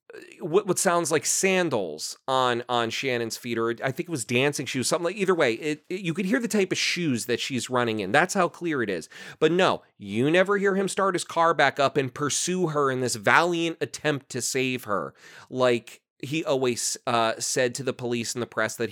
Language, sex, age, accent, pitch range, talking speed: English, male, 30-49, American, 130-195 Hz, 225 wpm